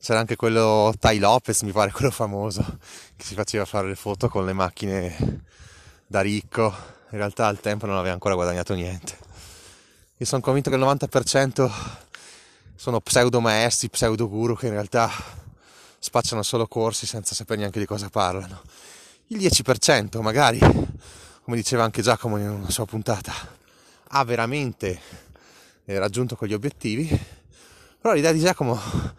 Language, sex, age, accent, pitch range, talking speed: Italian, male, 20-39, native, 100-125 Hz, 150 wpm